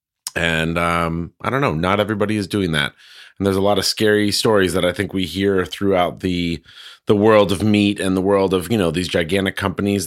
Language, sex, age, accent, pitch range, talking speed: English, male, 30-49, American, 95-130 Hz, 220 wpm